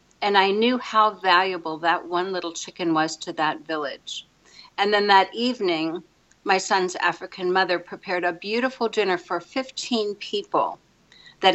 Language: English